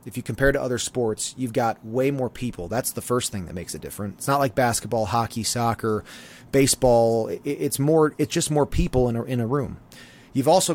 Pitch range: 110-140 Hz